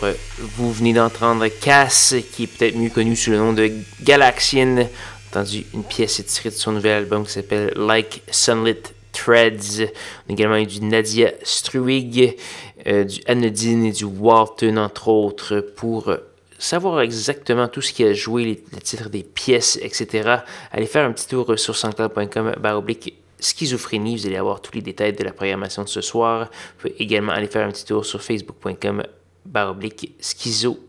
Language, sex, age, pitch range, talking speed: French, male, 20-39, 105-120 Hz, 175 wpm